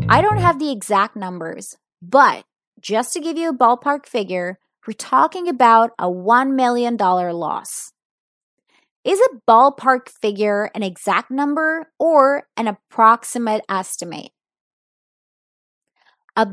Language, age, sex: English, 20-39, female